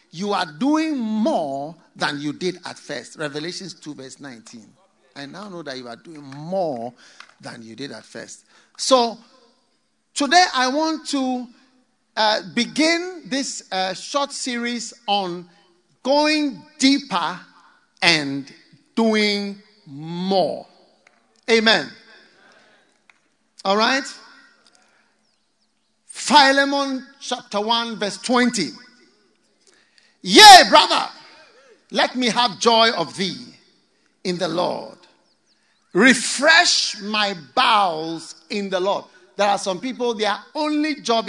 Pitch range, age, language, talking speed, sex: 190-275 Hz, 50-69, English, 110 wpm, male